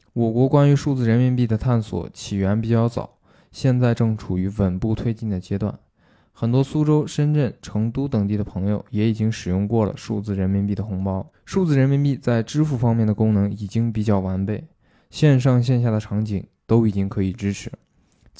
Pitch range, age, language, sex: 105-130 Hz, 20-39, Chinese, male